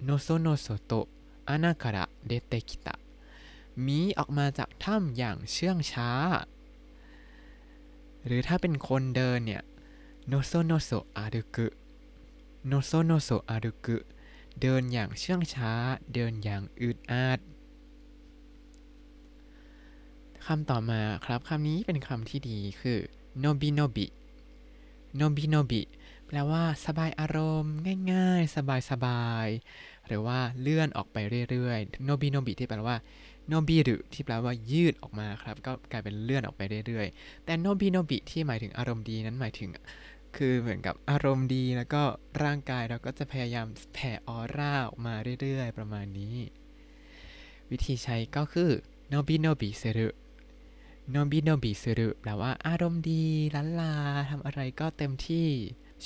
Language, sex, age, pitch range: Thai, male, 20-39, 115-155 Hz